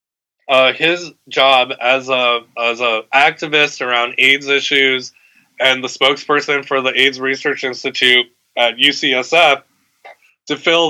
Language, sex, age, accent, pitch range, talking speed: English, male, 20-39, American, 125-150 Hz, 125 wpm